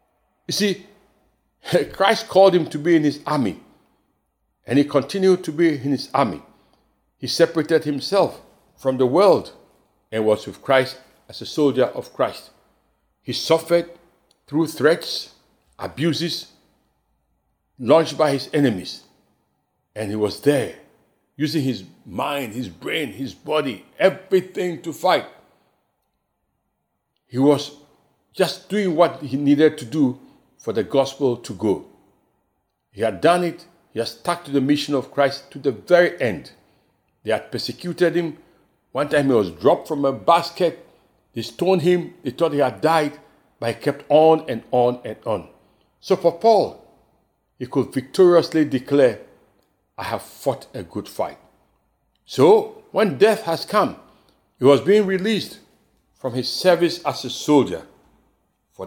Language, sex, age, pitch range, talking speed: English, male, 60-79, 130-170 Hz, 145 wpm